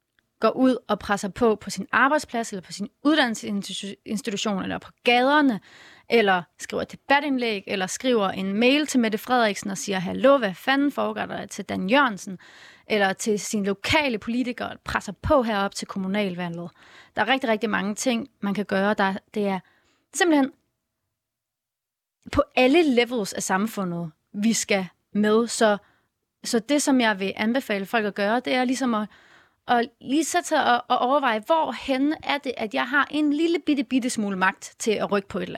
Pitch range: 205-265 Hz